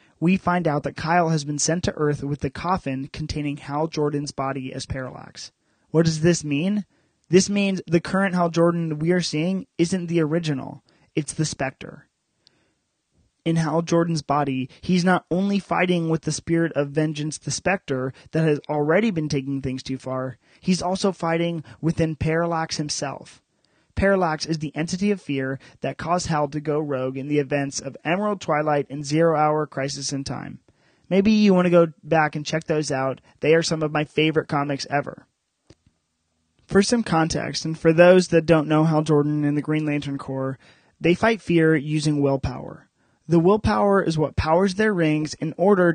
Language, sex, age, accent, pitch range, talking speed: English, male, 30-49, American, 145-170 Hz, 180 wpm